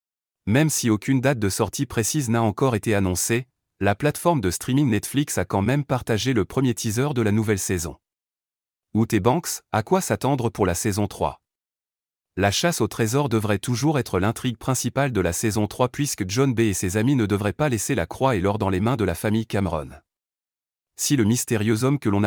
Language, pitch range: French, 100-135 Hz